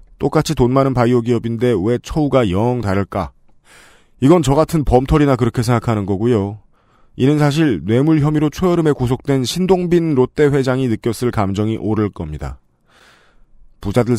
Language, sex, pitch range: Korean, male, 110-155 Hz